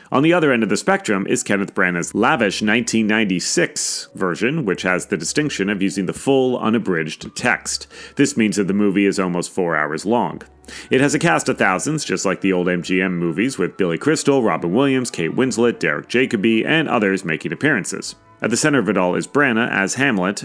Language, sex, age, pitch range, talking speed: English, male, 30-49, 90-125 Hz, 200 wpm